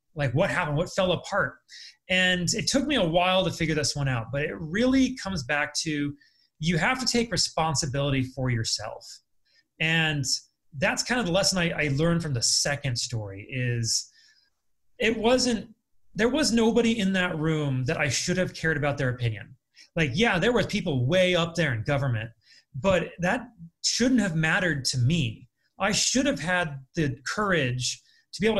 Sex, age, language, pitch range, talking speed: male, 30-49, English, 145-190 Hz, 180 wpm